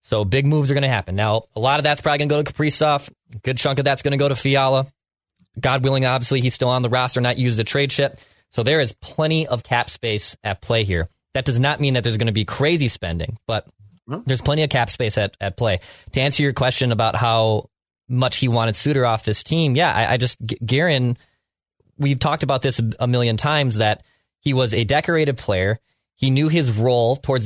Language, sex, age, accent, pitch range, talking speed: English, male, 20-39, American, 115-140 Hz, 235 wpm